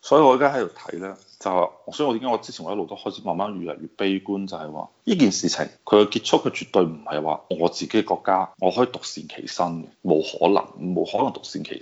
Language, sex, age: Chinese, male, 30-49